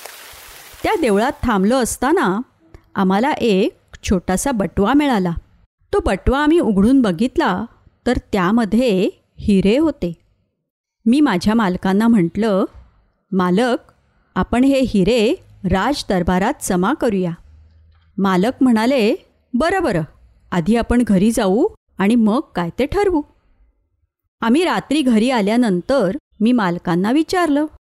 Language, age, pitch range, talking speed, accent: Marathi, 30-49, 185-260 Hz, 105 wpm, native